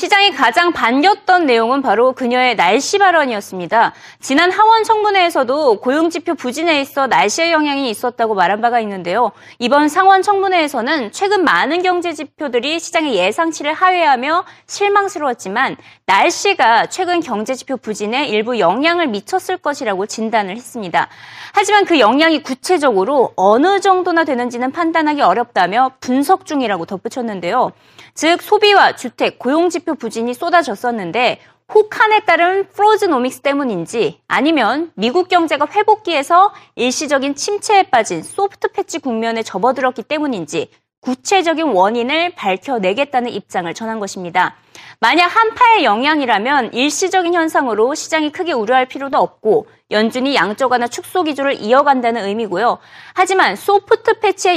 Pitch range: 240-365 Hz